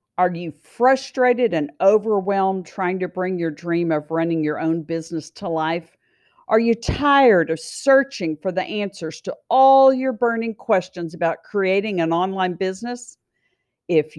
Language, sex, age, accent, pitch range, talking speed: English, female, 50-69, American, 170-255 Hz, 150 wpm